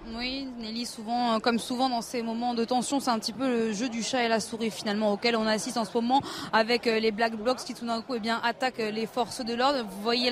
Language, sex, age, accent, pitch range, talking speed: French, female, 20-39, French, 240-285 Hz, 260 wpm